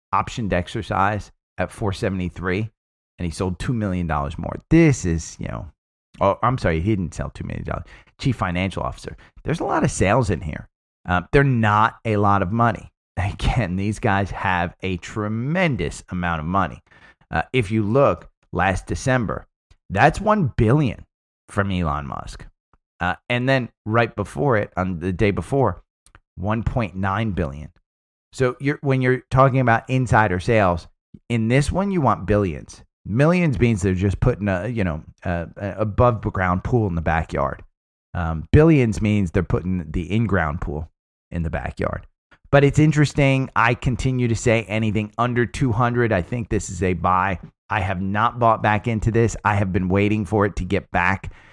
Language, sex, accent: English, male, American